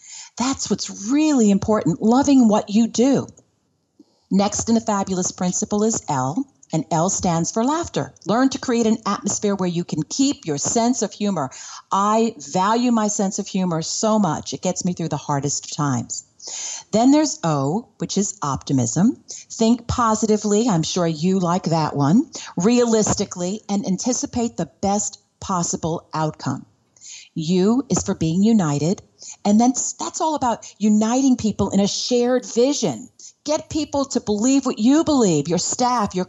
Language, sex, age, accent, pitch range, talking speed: English, female, 40-59, American, 170-235 Hz, 155 wpm